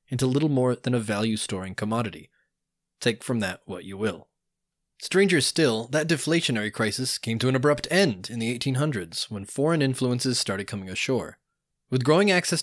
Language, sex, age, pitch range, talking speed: English, male, 20-39, 110-140 Hz, 165 wpm